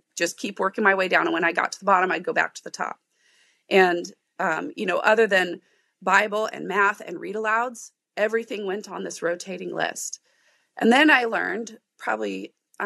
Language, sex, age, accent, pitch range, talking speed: English, female, 30-49, American, 175-230 Hz, 200 wpm